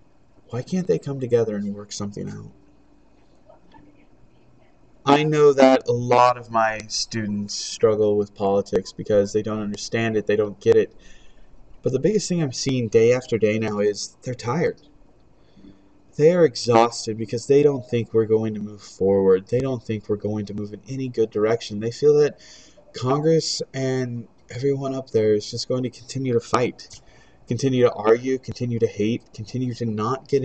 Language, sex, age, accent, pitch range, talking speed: English, male, 20-39, American, 105-135 Hz, 175 wpm